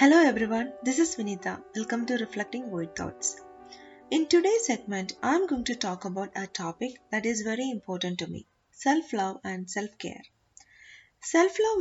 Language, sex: English, female